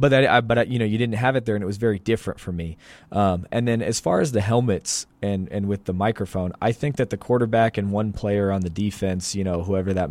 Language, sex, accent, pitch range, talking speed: English, male, American, 95-115 Hz, 275 wpm